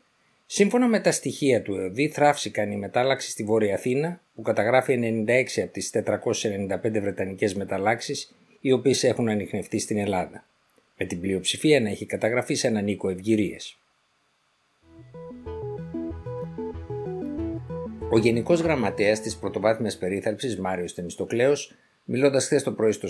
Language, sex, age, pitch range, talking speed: Greek, male, 50-69, 100-130 Hz, 125 wpm